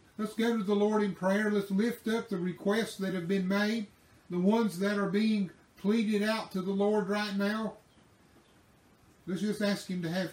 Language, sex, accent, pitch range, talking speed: English, male, American, 165-205 Hz, 200 wpm